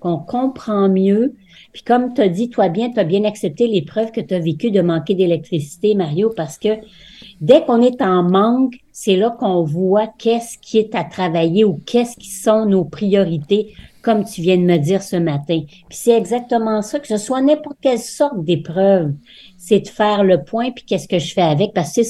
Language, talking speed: French, 210 wpm